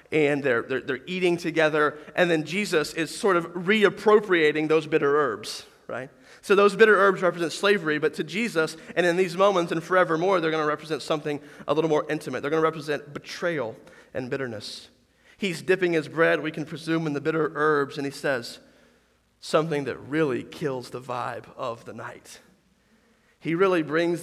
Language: English